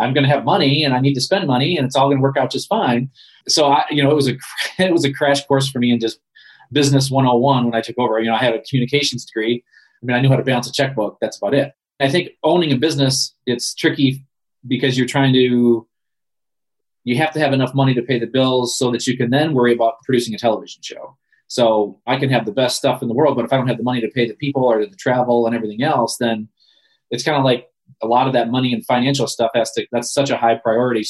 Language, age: English, 30-49